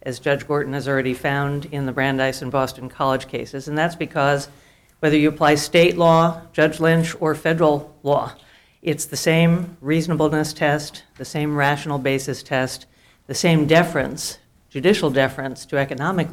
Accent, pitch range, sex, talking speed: American, 135-160 Hz, female, 160 wpm